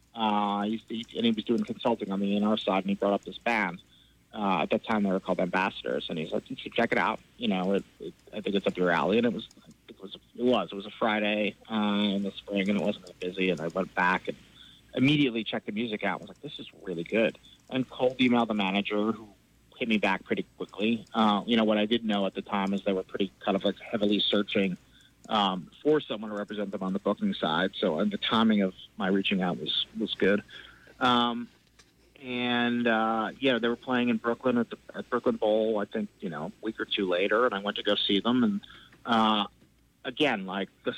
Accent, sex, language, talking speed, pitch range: American, male, English, 250 wpm, 100-120 Hz